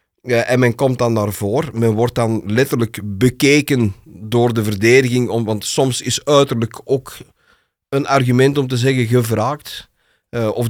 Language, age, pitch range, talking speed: Dutch, 40-59, 115-140 Hz, 165 wpm